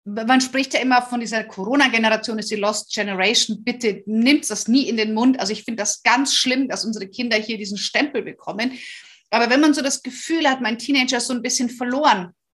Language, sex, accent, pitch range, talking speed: German, female, German, 220-270 Hz, 215 wpm